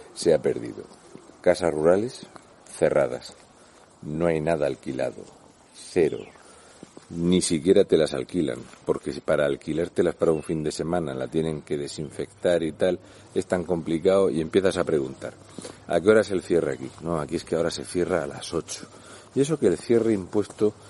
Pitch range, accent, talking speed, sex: 85-115 Hz, Spanish, 170 wpm, male